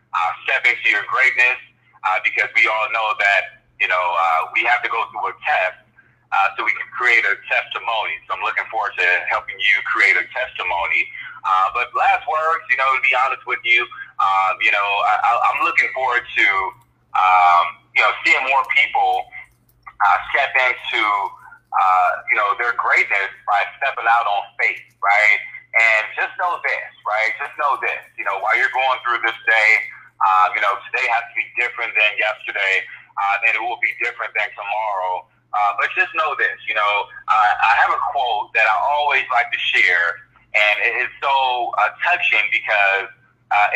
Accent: American